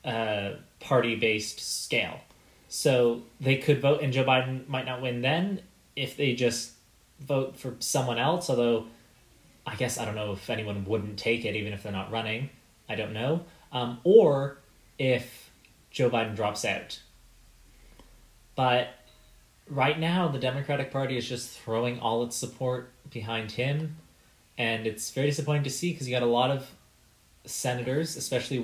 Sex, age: male, 20-39